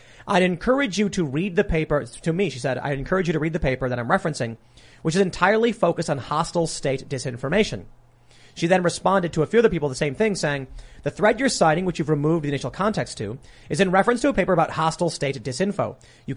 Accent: American